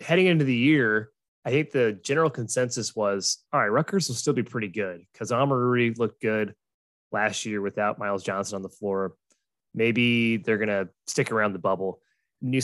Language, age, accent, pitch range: English, 20-39, American, 105-130 Hz